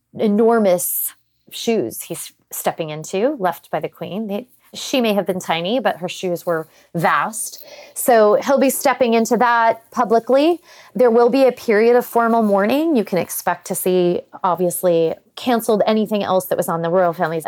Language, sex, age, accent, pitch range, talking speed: English, female, 30-49, American, 185-245 Hz, 170 wpm